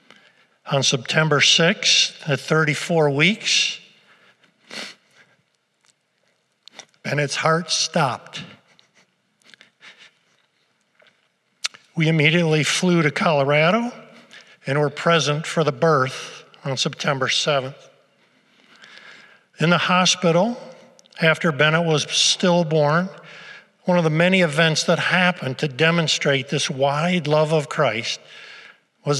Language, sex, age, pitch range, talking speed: English, male, 50-69, 145-180 Hz, 90 wpm